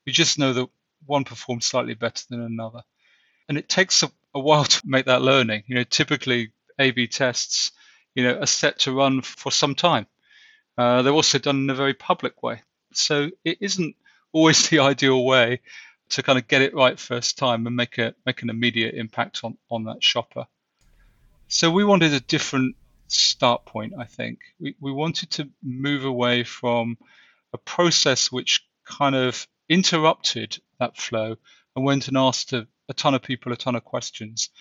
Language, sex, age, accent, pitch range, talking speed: English, male, 40-59, British, 120-145 Hz, 185 wpm